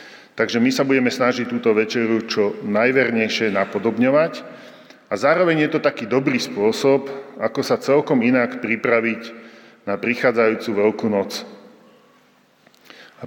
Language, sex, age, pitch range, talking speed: Slovak, male, 40-59, 105-120 Hz, 120 wpm